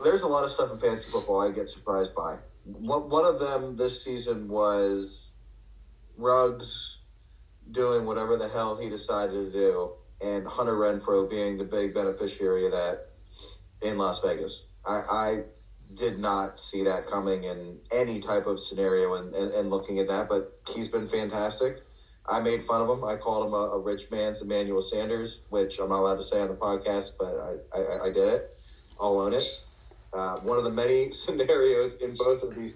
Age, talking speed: 30-49, 190 wpm